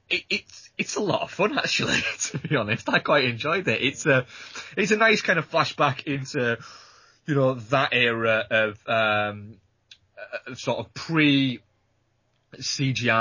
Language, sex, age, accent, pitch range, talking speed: English, male, 20-39, British, 105-125 Hz, 150 wpm